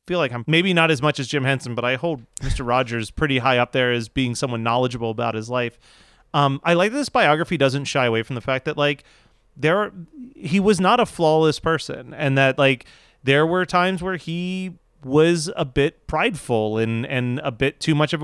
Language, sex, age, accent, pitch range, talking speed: English, male, 30-49, American, 120-155 Hz, 220 wpm